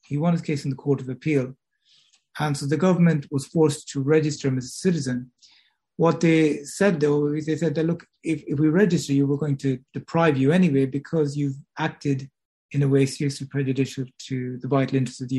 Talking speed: 215 wpm